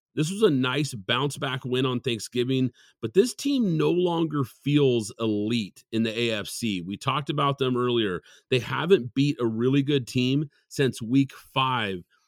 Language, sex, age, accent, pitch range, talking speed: English, male, 40-59, American, 125-155 Hz, 160 wpm